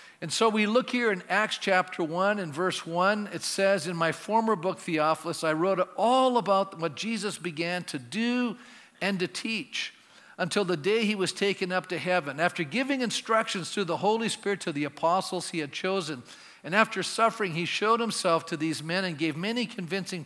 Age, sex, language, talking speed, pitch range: 50-69, male, English, 195 wpm, 155-205 Hz